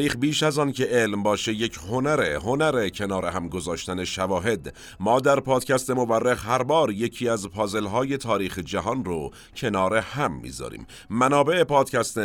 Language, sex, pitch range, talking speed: Persian, male, 100-130 Hz, 150 wpm